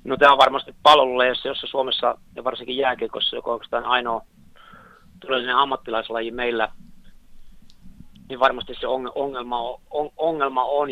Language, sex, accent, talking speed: Finnish, male, native, 120 wpm